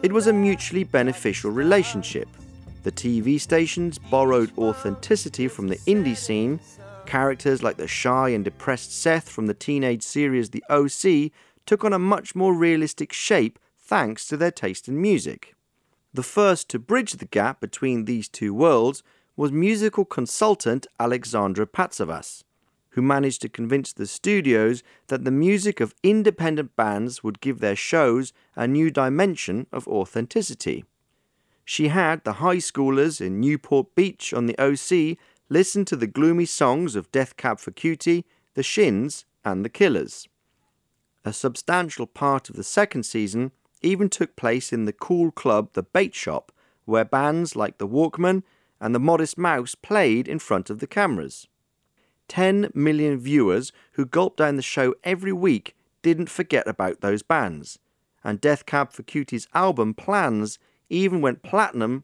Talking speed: 155 wpm